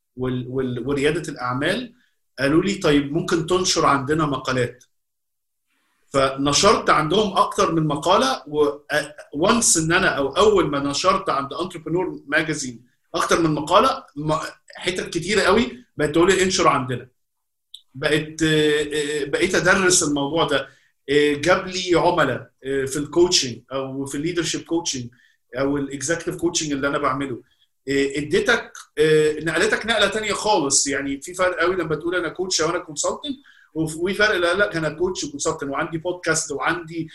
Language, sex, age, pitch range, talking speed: Arabic, male, 50-69, 140-180 Hz, 135 wpm